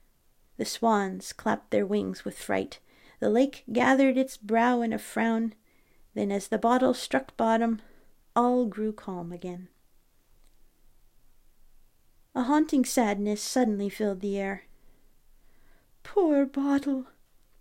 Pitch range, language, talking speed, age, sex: 205-280 Hz, English, 115 wpm, 40-59, female